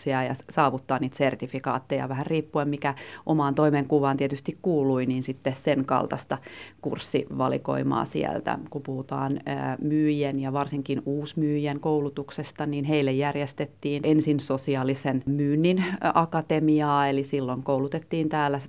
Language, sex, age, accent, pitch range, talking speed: Finnish, female, 30-49, native, 130-150 Hz, 110 wpm